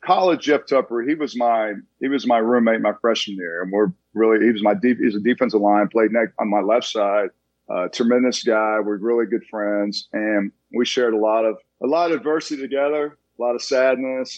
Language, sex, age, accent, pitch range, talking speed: English, male, 40-59, American, 105-125 Hz, 215 wpm